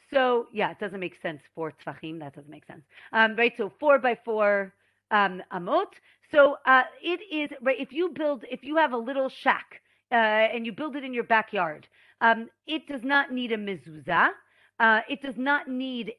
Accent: American